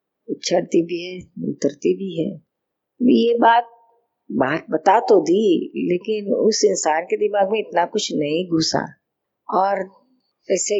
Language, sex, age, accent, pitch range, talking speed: Hindi, female, 50-69, native, 175-230 Hz, 135 wpm